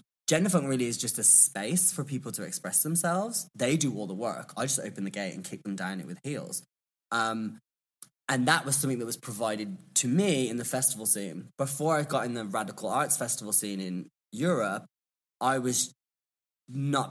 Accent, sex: British, male